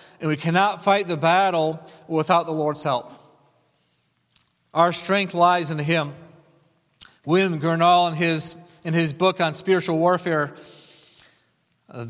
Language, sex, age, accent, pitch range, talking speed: English, male, 40-59, American, 165-195 Hz, 130 wpm